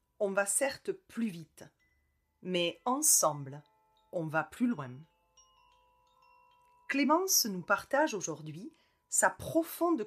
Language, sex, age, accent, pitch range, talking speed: French, female, 40-59, French, 155-250 Hz, 100 wpm